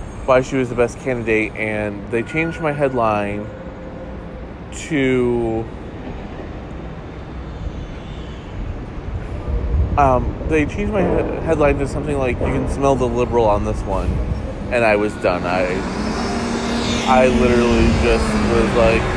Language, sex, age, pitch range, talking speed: English, male, 20-39, 100-135 Hz, 120 wpm